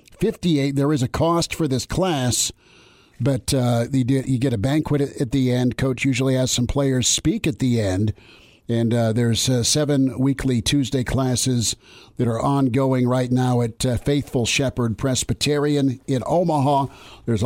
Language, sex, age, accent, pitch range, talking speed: English, male, 50-69, American, 120-140 Hz, 160 wpm